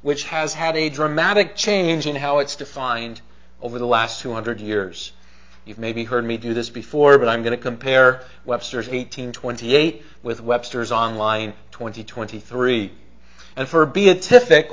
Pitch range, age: 110-165 Hz, 40-59